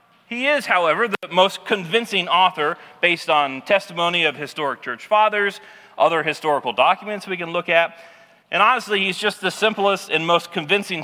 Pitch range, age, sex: 160-210 Hz, 40-59, male